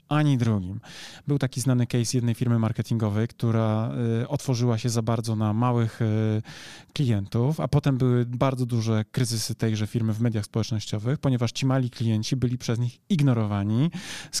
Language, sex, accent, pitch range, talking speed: Polish, male, native, 115-140 Hz, 155 wpm